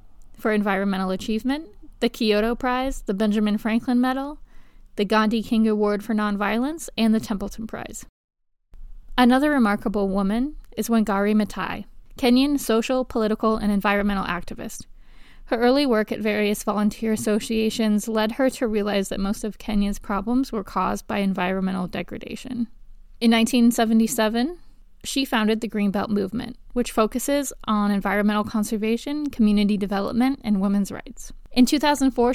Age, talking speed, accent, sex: 20-39, 135 wpm, American, female